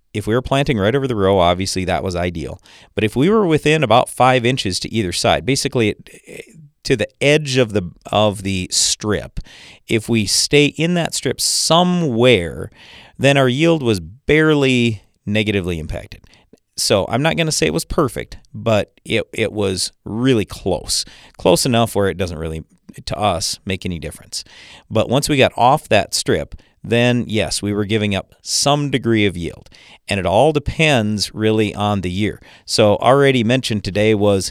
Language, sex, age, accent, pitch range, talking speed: English, male, 40-59, American, 95-135 Hz, 175 wpm